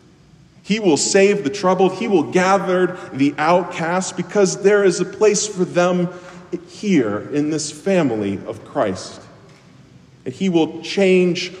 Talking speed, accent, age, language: 140 wpm, American, 40-59, English